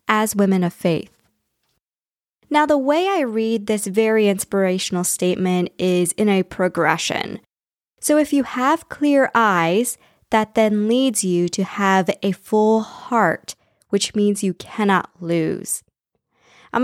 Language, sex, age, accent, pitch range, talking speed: English, female, 20-39, American, 180-250 Hz, 135 wpm